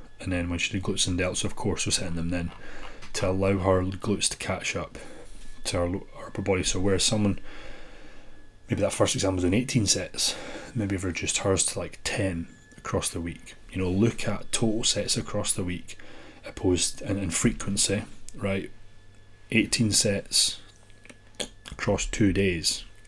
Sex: male